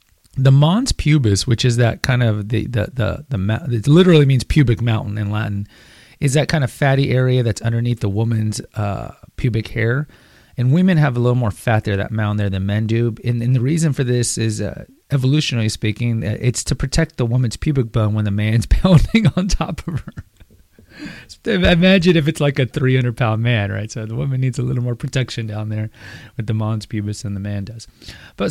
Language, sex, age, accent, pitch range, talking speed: English, male, 30-49, American, 110-145 Hz, 205 wpm